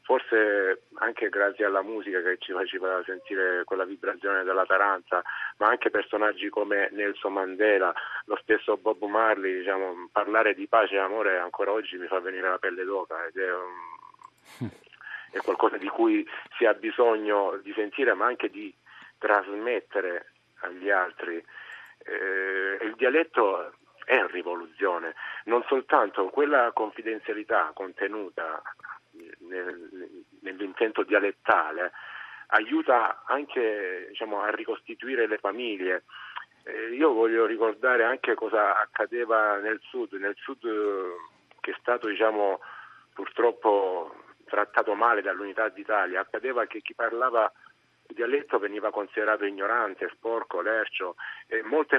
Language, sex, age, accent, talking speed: Italian, male, 40-59, native, 125 wpm